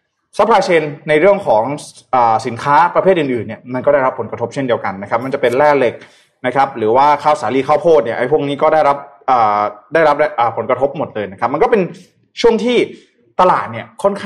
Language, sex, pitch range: Thai, male, 120-160 Hz